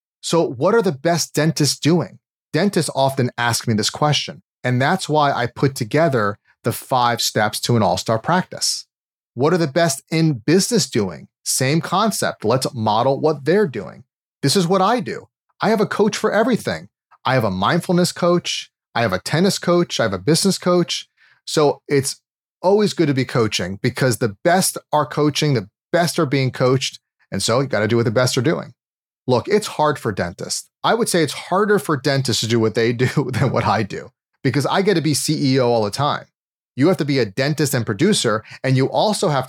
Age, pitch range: 30-49, 120-165 Hz